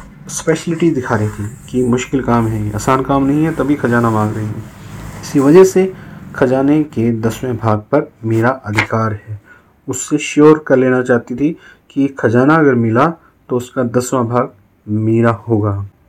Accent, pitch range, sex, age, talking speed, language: native, 115-155 Hz, male, 30-49, 165 wpm, Hindi